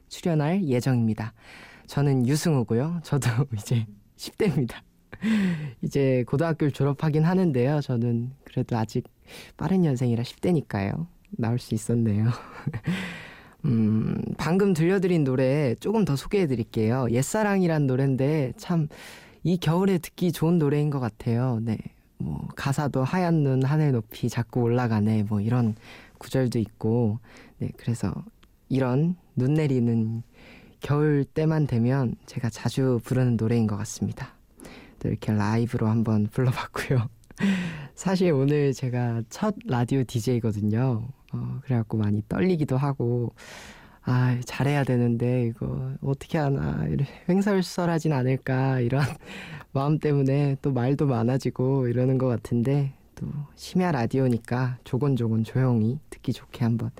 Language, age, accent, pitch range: Korean, 20-39, native, 115-150 Hz